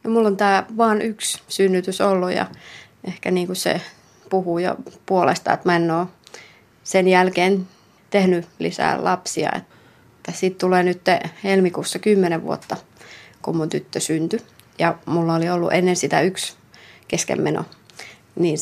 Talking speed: 140 wpm